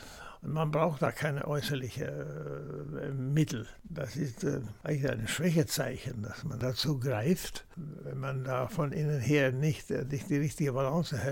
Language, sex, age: German, male, 60-79